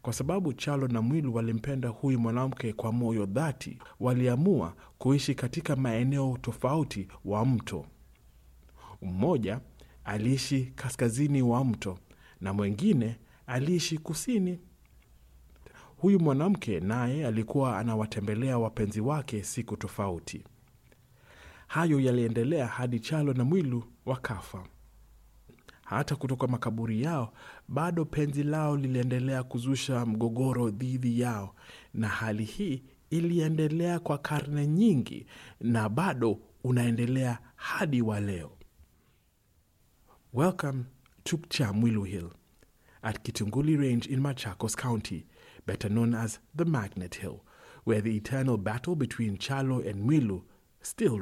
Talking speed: 110 wpm